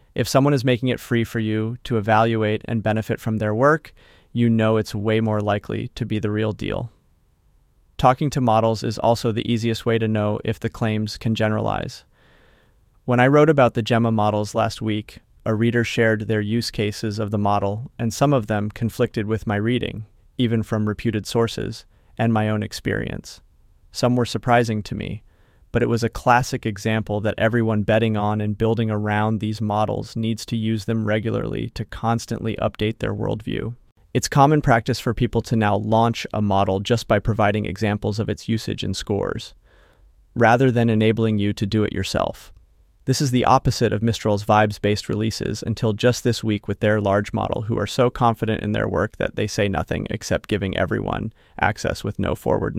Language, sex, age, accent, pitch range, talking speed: English, male, 30-49, American, 105-115 Hz, 190 wpm